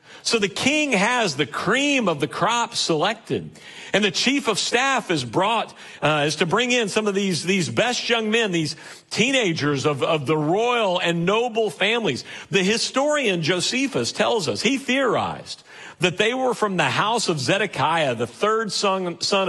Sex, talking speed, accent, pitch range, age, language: male, 175 wpm, American, 170-220 Hz, 50-69, English